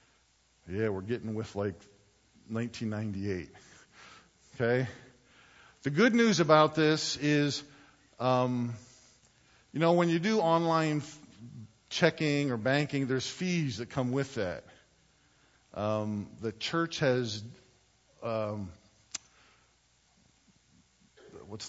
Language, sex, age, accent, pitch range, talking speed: English, male, 50-69, American, 105-135 Hz, 95 wpm